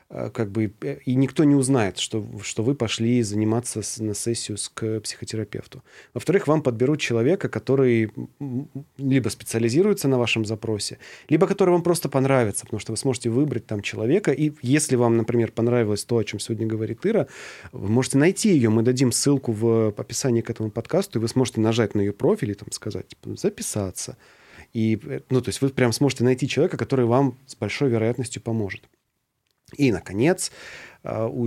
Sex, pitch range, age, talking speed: male, 110-130 Hz, 30-49, 175 wpm